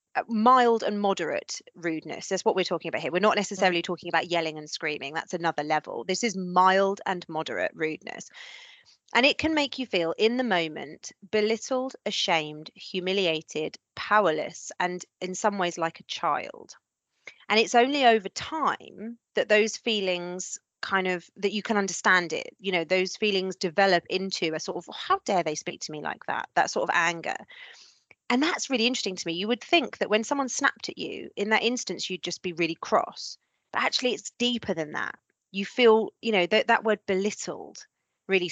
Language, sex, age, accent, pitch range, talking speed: English, female, 30-49, British, 175-230 Hz, 190 wpm